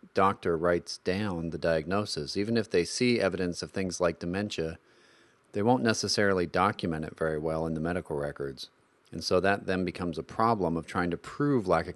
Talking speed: 190 wpm